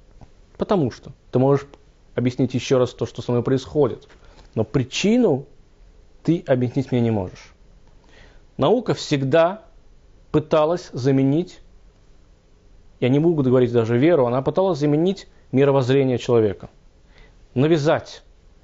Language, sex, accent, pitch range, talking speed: Russian, male, native, 120-150 Hz, 115 wpm